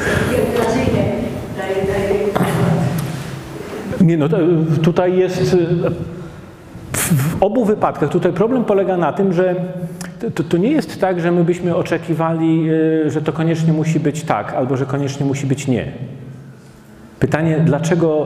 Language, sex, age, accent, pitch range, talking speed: Polish, male, 40-59, native, 140-180 Hz, 120 wpm